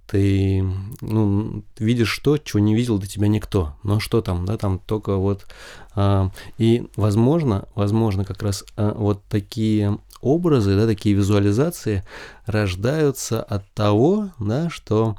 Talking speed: 140 wpm